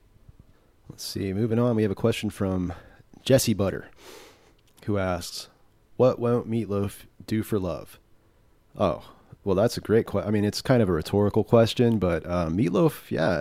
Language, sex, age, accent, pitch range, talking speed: English, male, 30-49, American, 95-120 Hz, 165 wpm